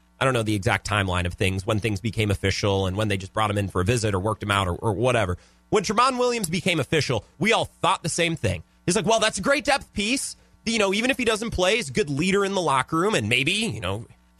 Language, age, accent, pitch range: English, 30-49, American, 95-155 Hz